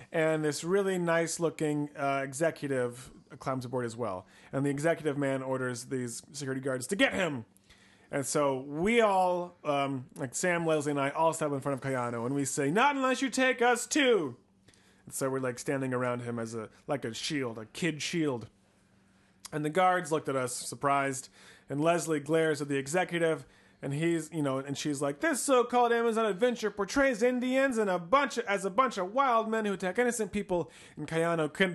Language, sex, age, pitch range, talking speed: English, male, 30-49, 130-175 Hz, 195 wpm